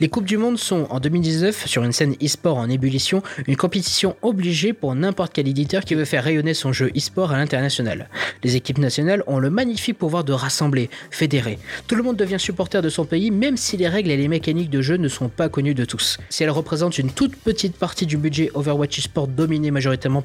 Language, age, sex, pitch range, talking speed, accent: French, 20-39, male, 135-180 Hz, 220 wpm, French